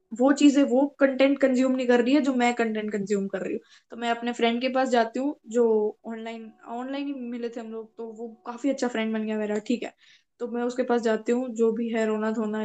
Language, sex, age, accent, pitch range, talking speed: Hindi, female, 10-29, native, 235-285 Hz, 250 wpm